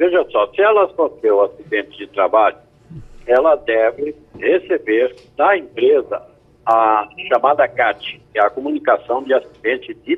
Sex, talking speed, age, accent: male, 135 wpm, 60-79, Brazilian